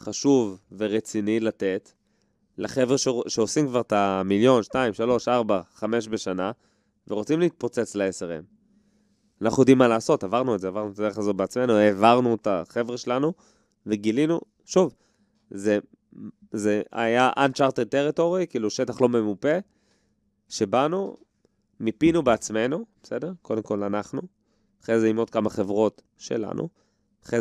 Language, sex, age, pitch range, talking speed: Hebrew, male, 20-39, 105-130 Hz, 130 wpm